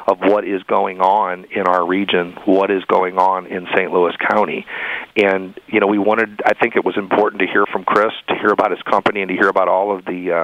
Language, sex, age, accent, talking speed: English, male, 40-59, American, 240 wpm